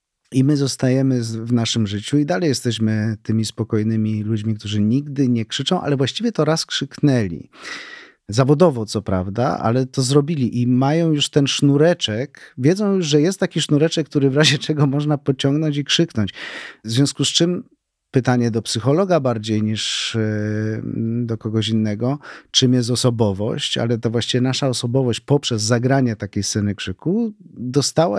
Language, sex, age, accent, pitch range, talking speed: Polish, male, 40-59, native, 115-145 Hz, 155 wpm